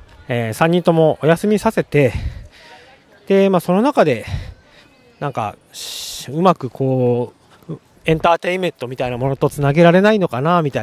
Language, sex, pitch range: Japanese, male, 105-160 Hz